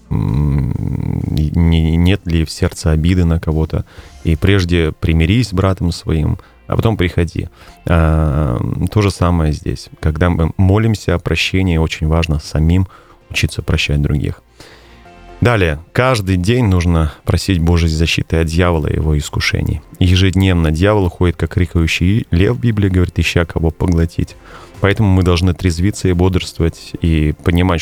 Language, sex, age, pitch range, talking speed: Russian, male, 30-49, 80-95 Hz, 140 wpm